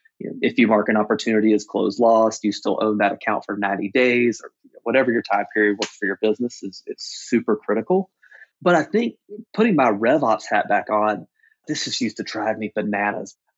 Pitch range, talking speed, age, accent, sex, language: 110-135 Hz, 200 wpm, 30-49, American, male, English